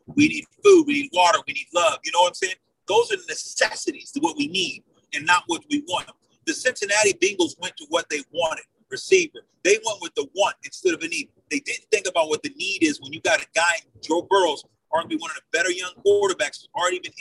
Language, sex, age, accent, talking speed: English, male, 40-59, American, 245 wpm